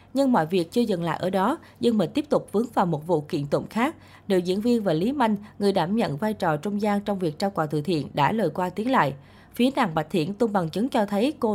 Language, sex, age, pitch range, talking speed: Vietnamese, female, 20-39, 170-235 Hz, 275 wpm